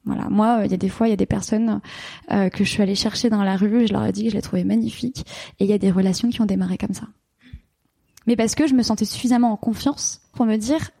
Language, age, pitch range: French, 20-39, 210-255 Hz